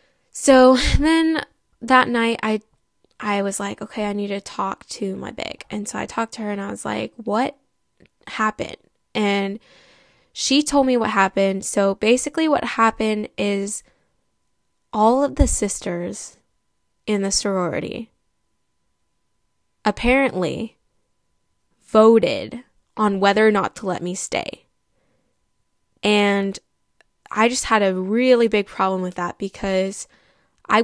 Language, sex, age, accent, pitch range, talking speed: English, female, 10-29, American, 195-230 Hz, 130 wpm